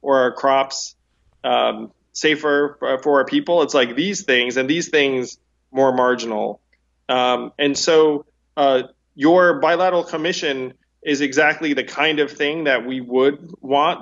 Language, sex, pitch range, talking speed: English, male, 125-145 Hz, 145 wpm